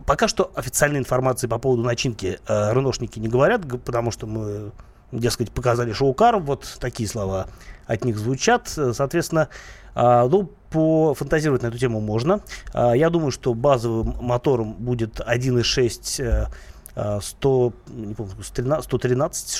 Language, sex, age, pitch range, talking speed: Russian, male, 30-49, 115-145 Hz, 120 wpm